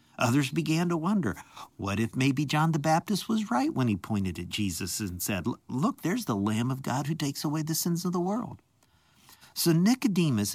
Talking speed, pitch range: 200 wpm, 105-155 Hz